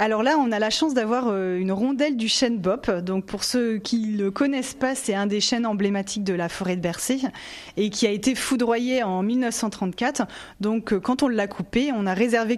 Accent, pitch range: French, 185-225 Hz